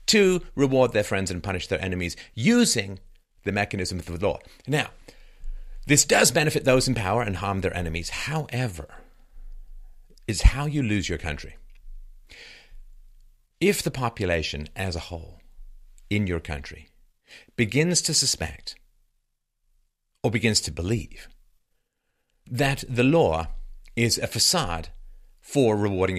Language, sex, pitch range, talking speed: English, male, 85-130 Hz, 130 wpm